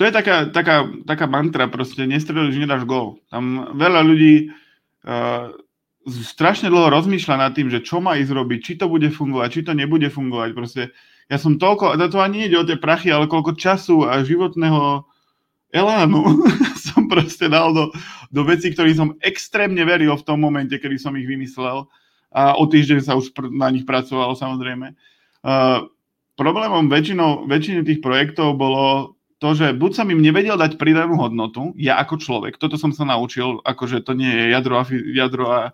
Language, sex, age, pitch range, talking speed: Slovak, male, 20-39, 130-160 Hz, 180 wpm